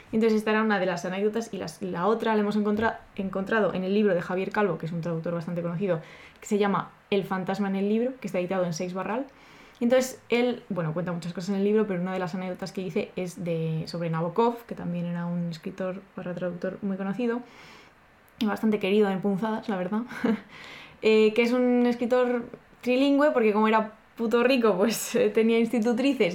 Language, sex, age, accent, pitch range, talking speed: Spanish, female, 20-39, Spanish, 180-225 Hz, 210 wpm